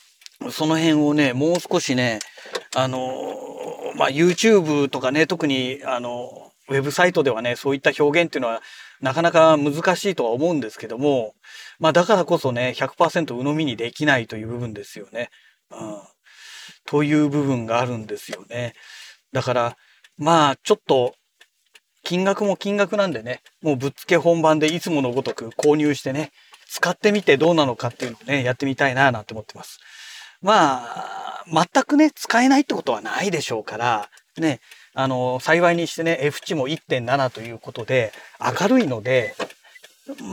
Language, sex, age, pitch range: Japanese, male, 40-59, 125-170 Hz